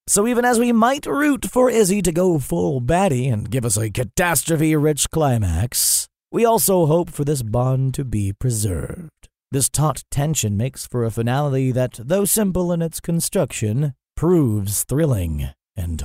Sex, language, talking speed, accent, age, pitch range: male, English, 160 wpm, American, 30-49, 120-165 Hz